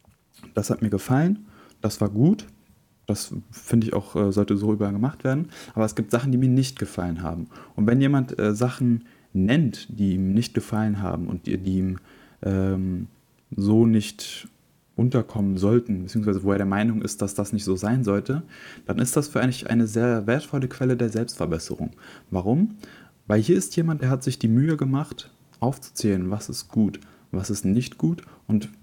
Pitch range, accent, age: 100-130 Hz, German, 20-39